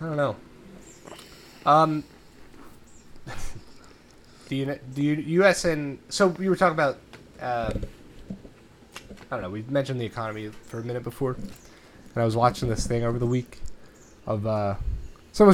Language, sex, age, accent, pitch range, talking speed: English, male, 20-39, American, 110-145 Hz, 145 wpm